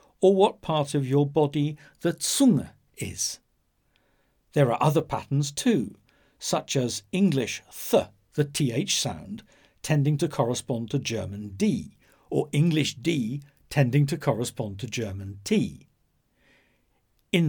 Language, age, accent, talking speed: English, 60-79, British, 125 wpm